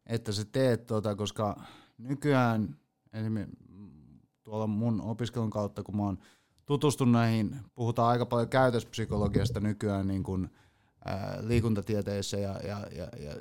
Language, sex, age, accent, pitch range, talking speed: Finnish, male, 30-49, native, 100-120 Hz, 125 wpm